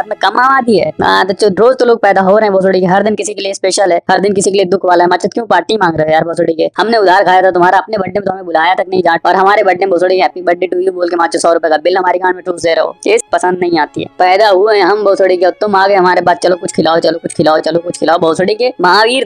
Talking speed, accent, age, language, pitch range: 295 wpm, native, 20-39, Hindi, 180-215 Hz